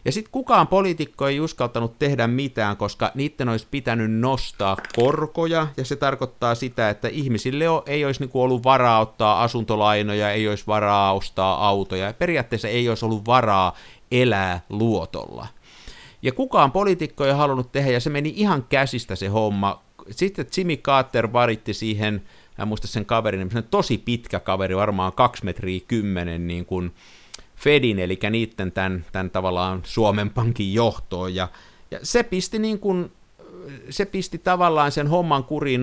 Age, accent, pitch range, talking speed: 50-69, native, 100-140 Hz, 150 wpm